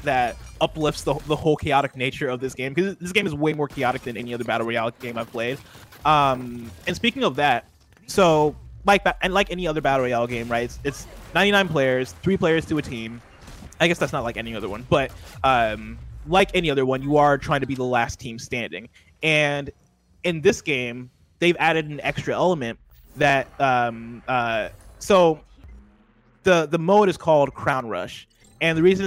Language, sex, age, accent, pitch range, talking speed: English, male, 20-39, American, 120-160 Hz, 200 wpm